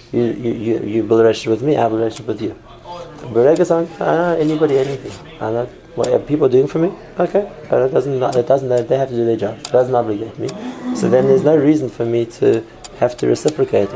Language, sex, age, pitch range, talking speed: English, male, 30-49, 110-150 Hz, 225 wpm